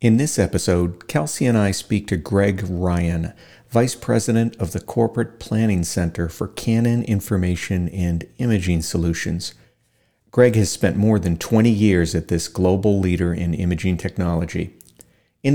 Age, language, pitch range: 50-69, English, 90-120 Hz